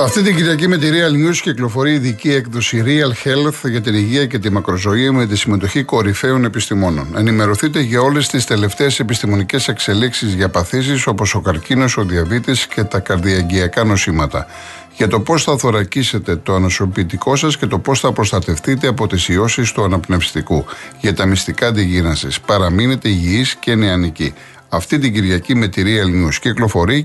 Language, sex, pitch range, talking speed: Greek, male, 95-130 Hz, 165 wpm